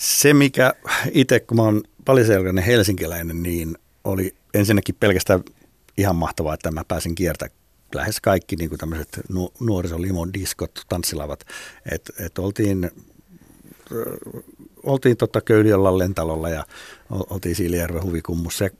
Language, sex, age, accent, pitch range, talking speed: Finnish, male, 60-79, native, 85-120 Hz, 115 wpm